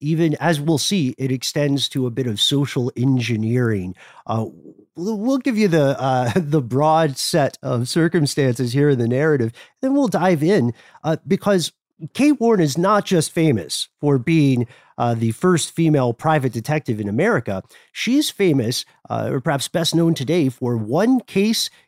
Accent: American